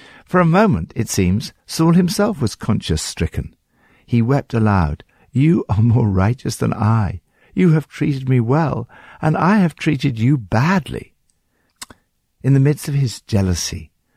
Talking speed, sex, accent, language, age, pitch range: 155 wpm, male, British, English, 60-79, 90-135 Hz